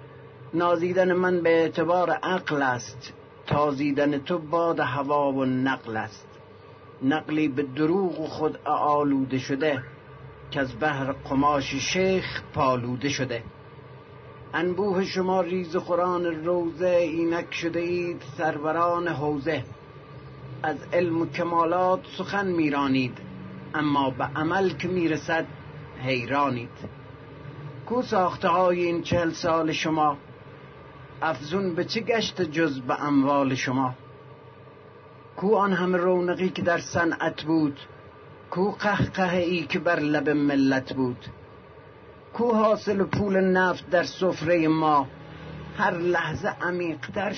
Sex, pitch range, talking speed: male, 140-175 Hz, 115 wpm